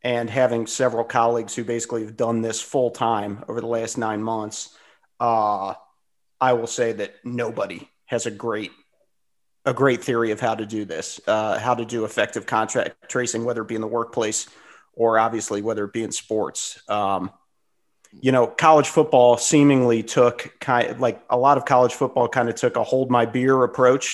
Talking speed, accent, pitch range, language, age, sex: 185 wpm, American, 115-140 Hz, English, 40-59, male